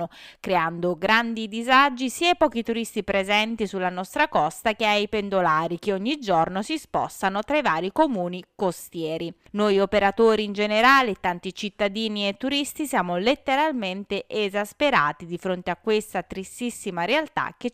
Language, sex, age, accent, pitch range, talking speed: Italian, female, 20-39, native, 185-250 Hz, 140 wpm